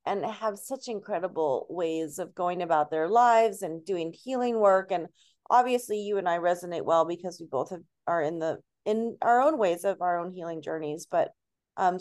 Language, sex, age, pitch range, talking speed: English, female, 30-49, 165-205 Hz, 195 wpm